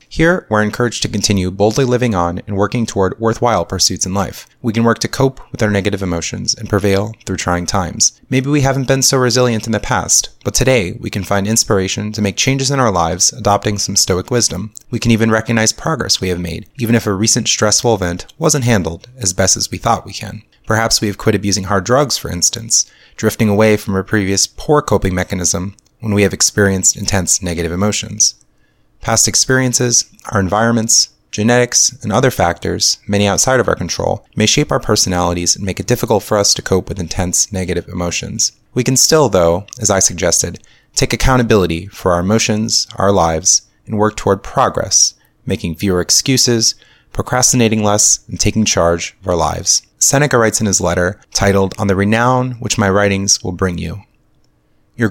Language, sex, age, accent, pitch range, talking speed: English, male, 30-49, American, 95-120 Hz, 190 wpm